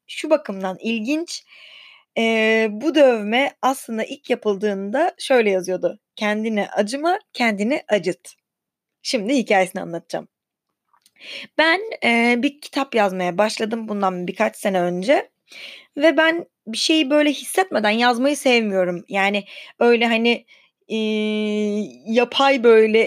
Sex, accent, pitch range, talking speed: female, native, 210-270 Hz, 110 wpm